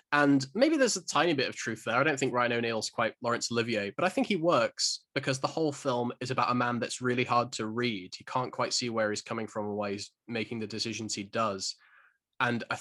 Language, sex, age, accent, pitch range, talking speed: English, male, 20-39, British, 110-130 Hz, 245 wpm